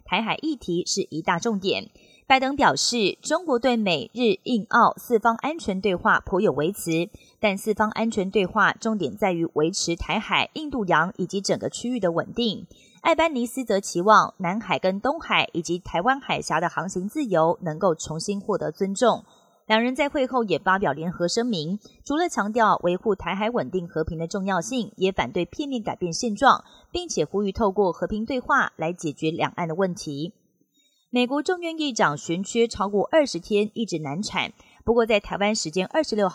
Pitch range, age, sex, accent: 175-235 Hz, 20-39, female, native